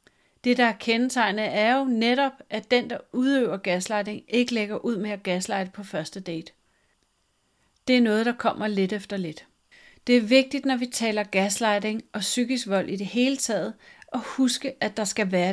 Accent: native